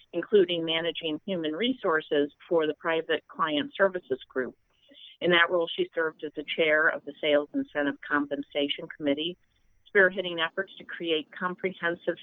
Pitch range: 150-190 Hz